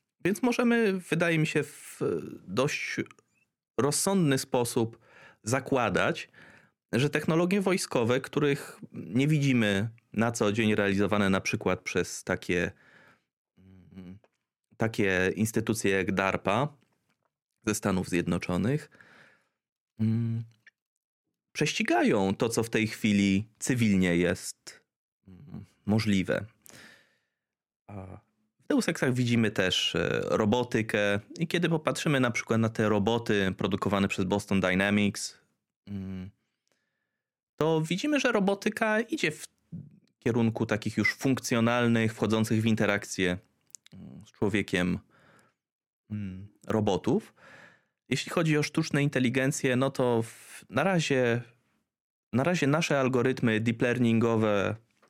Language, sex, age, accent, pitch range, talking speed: Polish, male, 30-49, native, 100-140 Hz, 95 wpm